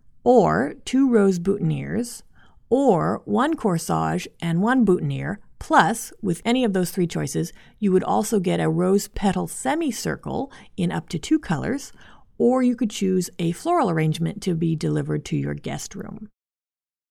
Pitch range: 155-205 Hz